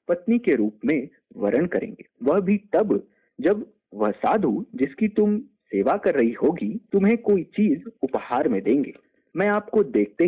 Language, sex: Hindi, male